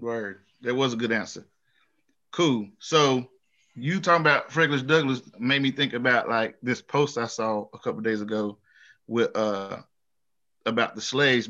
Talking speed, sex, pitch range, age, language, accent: 165 wpm, male, 115-170 Hz, 20-39, English, American